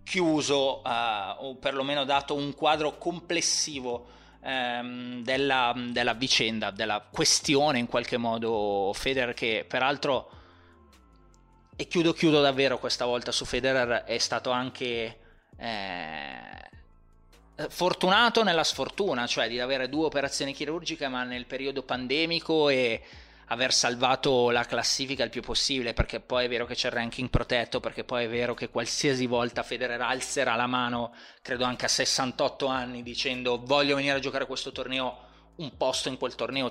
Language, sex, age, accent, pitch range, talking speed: Italian, male, 20-39, native, 120-140 Hz, 145 wpm